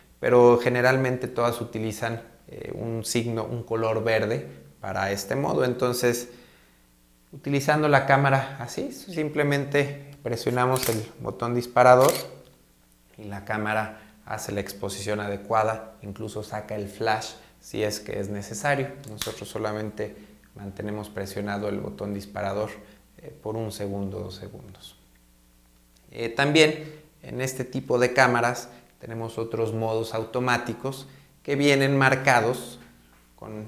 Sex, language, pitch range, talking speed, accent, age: male, Spanish, 105-125 Hz, 120 wpm, Mexican, 30-49